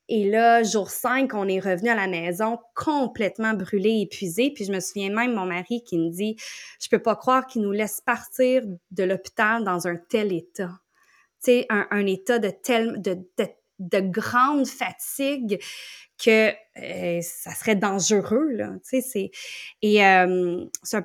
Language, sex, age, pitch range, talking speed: French, female, 20-39, 195-245 Hz, 170 wpm